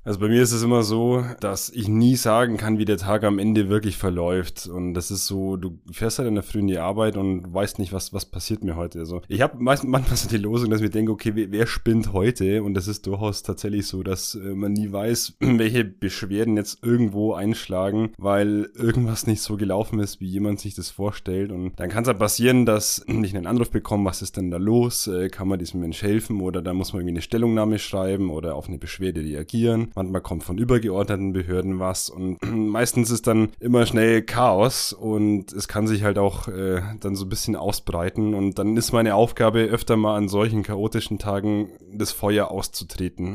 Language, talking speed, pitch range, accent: German, 215 wpm, 95-110 Hz, German